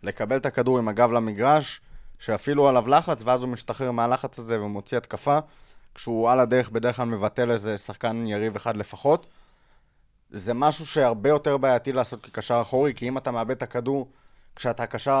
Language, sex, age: Hebrew, male, 20-39